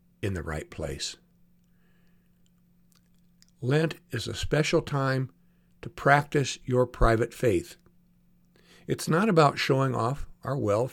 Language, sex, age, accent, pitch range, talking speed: English, male, 60-79, American, 115-175 Hz, 115 wpm